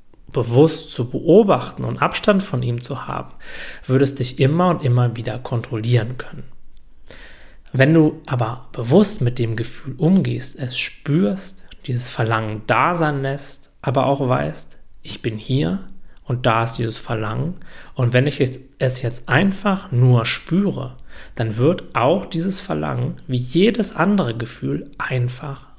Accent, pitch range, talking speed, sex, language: German, 120-160 Hz, 140 wpm, male, German